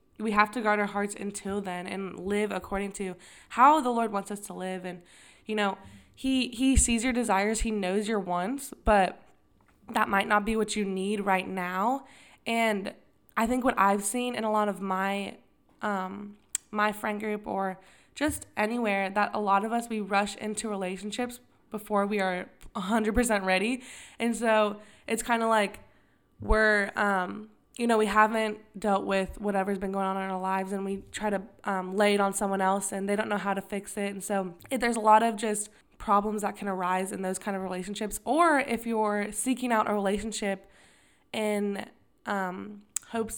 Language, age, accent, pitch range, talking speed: English, 20-39, American, 195-220 Hz, 190 wpm